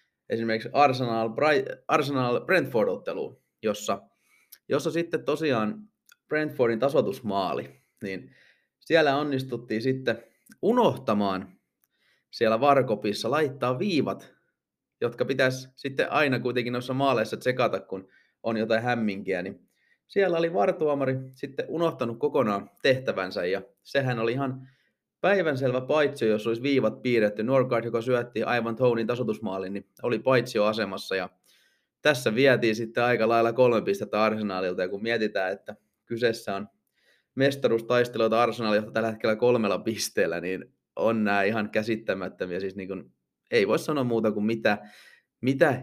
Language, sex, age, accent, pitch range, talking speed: Finnish, male, 30-49, native, 110-135 Hz, 125 wpm